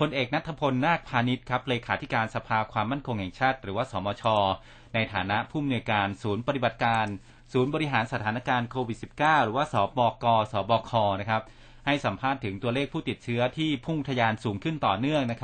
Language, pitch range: Thai, 115-140 Hz